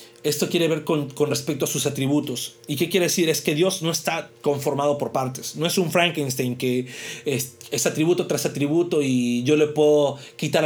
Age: 40-59